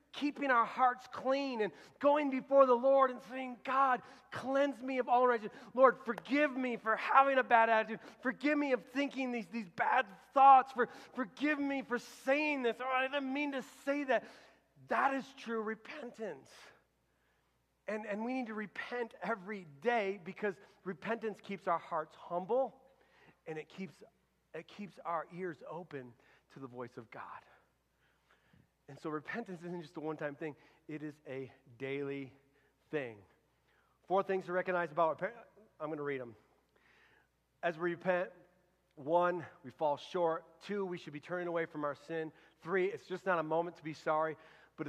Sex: male